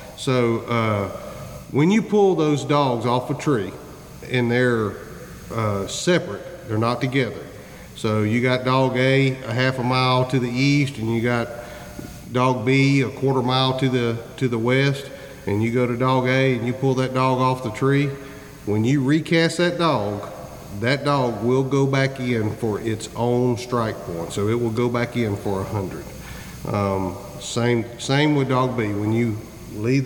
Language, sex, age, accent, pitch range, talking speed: English, male, 40-59, American, 115-135 Hz, 180 wpm